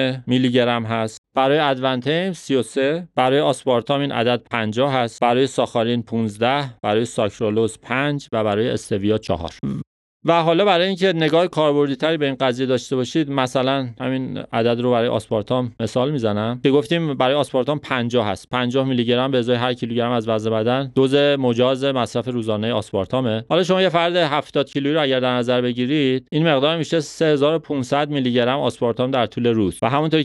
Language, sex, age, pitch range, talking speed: Persian, male, 30-49, 110-140 Hz, 170 wpm